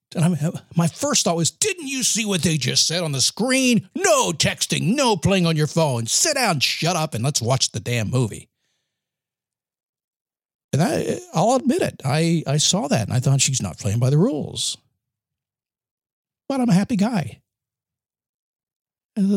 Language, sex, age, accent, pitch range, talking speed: English, male, 50-69, American, 125-175 Hz, 170 wpm